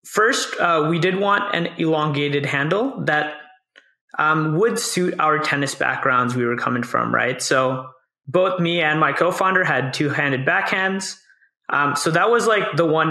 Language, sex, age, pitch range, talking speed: English, male, 20-39, 140-195 Hz, 165 wpm